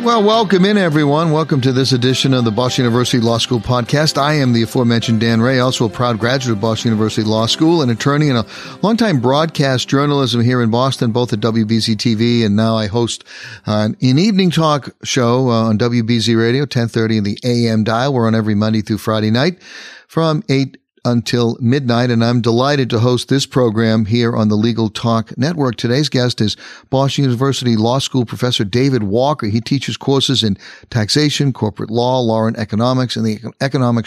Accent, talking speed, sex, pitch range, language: American, 185 wpm, male, 115-135 Hz, English